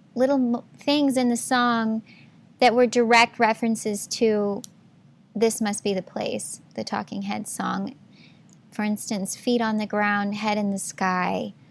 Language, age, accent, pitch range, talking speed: English, 10-29, American, 200-230 Hz, 150 wpm